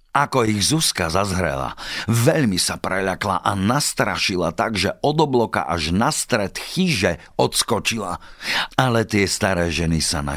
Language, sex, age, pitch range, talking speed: Slovak, male, 50-69, 80-130 Hz, 135 wpm